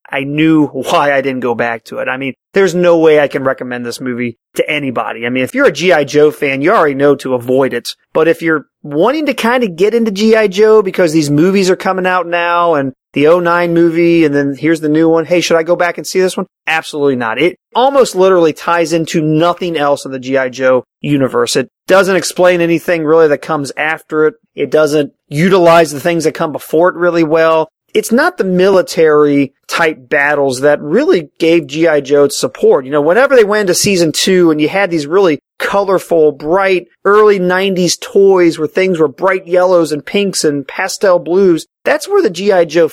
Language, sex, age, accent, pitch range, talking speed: English, male, 30-49, American, 145-185 Hz, 210 wpm